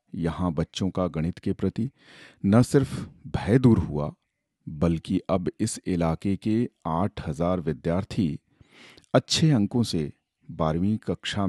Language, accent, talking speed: Hindi, native, 120 wpm